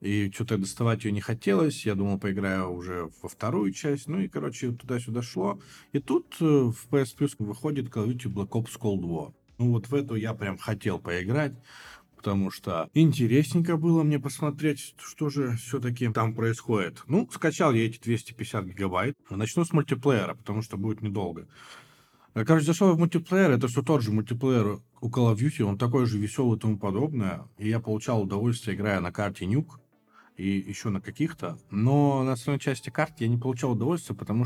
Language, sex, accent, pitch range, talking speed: Russian, male, native, 100-135 Hz, 185 wpm